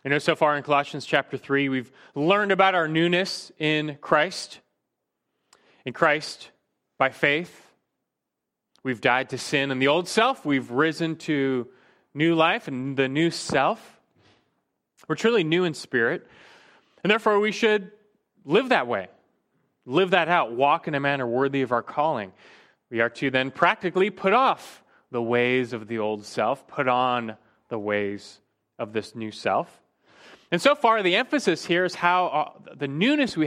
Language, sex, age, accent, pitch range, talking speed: English, male, 30-49, American, 125-180 Hz, 165 wpm